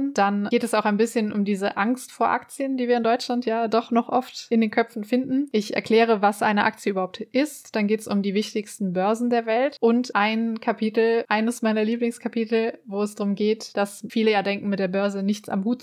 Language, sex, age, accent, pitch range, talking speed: German, female, 20-39, German, 200-230 Hz, 225 wpm